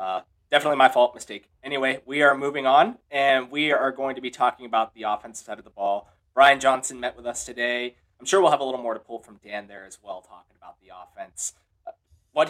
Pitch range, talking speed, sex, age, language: 115-165 Hz, 235 wpm, male, 20-39, English